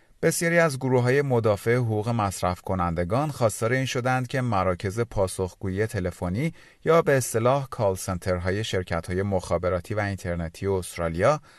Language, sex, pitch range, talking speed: Persian, male, 95-130 Hz, 140 wpm